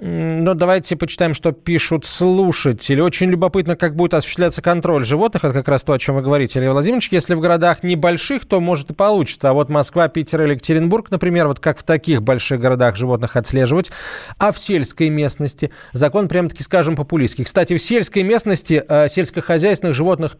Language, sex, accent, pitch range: Russian, male, native, 125-175 Hz